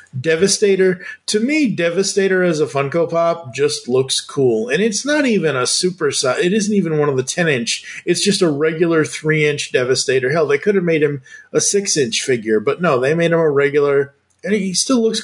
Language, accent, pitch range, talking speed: English, American, 135-195 Hz, 200 wpm